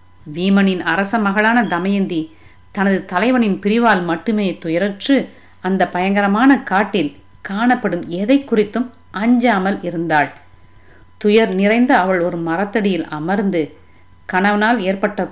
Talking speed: 95 wpm